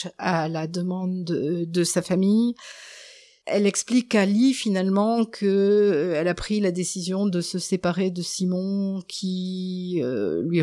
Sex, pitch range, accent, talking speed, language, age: female, 170-195 Hz, French, 145 wpm, French, 50-69